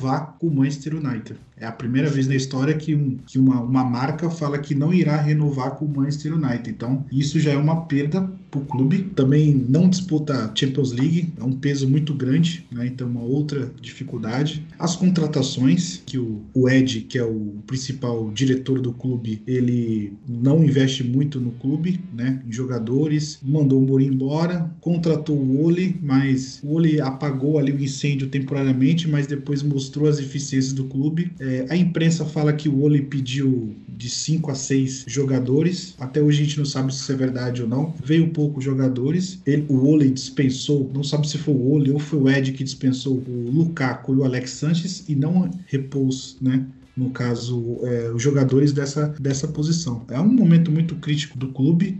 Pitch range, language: 130-150 Hz, Portuguese